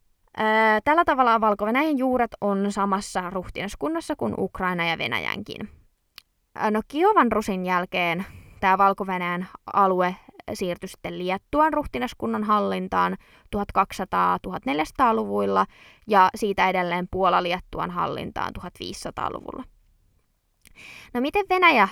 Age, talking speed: 20-39, 90 wpm